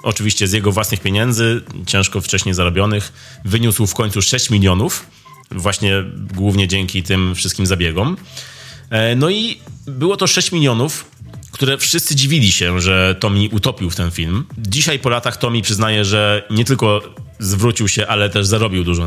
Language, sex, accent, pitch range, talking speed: Polish, male, native, 95-125 Hz, 155 wpm